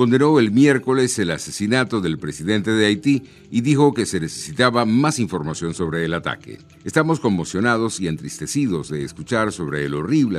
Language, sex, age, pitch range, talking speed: Spanish, male, 60-79, 80-115 Hz, 160 wpm